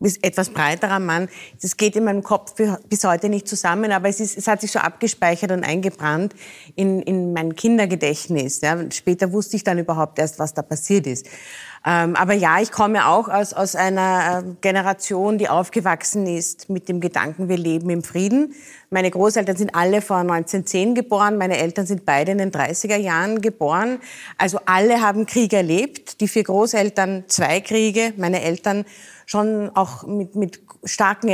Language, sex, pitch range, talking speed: German, female, 175-215 Hz, 170 wpm